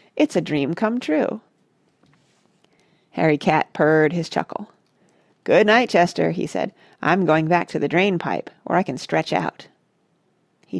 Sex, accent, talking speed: female, American, 150 wpm